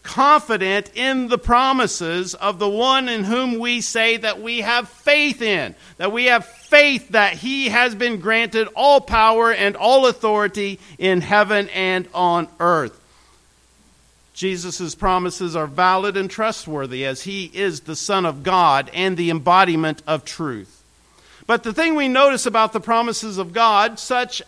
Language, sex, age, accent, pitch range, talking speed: English, male, 50-69, American, 155-235 Hz, 155 wpm